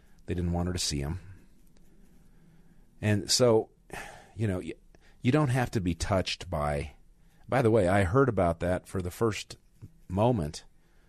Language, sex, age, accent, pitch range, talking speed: English, male, 40-59, American, 80-100 Hz, 160 wpm